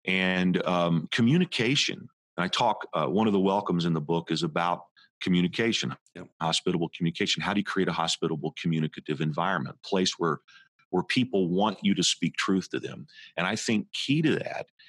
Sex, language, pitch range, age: male, English, 85-105 Hz, 50-69